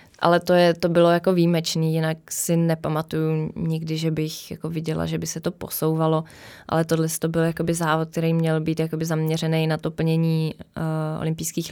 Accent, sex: native, female